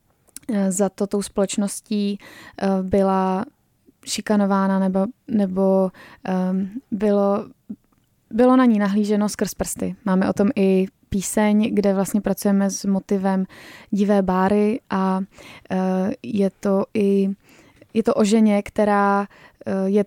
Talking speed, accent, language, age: 105 wpm, native, Czech, 20-39